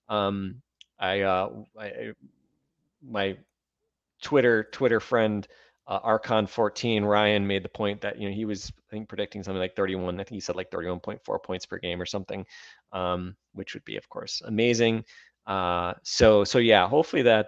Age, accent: 20-39, American